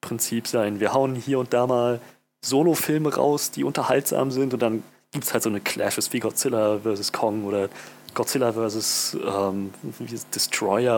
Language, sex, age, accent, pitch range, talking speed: German, male, 30-49, German, 110-135 Hz, 160 wpm